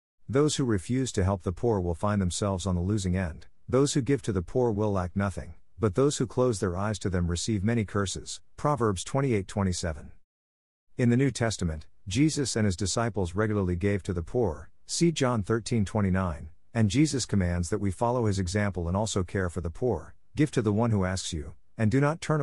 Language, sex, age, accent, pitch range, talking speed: English, male, 50-69, American, 90-115 Hz, 205 wpm